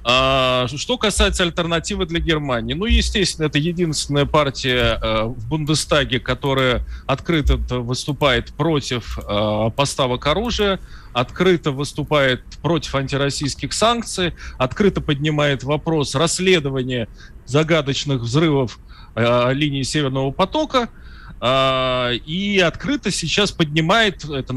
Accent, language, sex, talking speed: native, Russian, male, 90 wpm